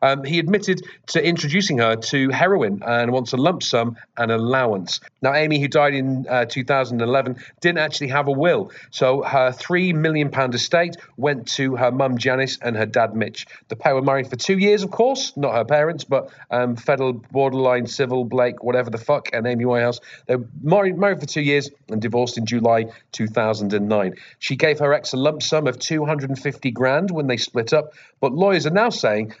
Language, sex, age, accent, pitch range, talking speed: English, male, 40-59, British, 120-150 Hz, 200 wpm